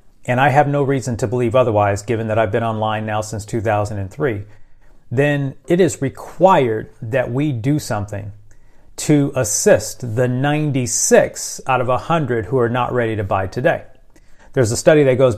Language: English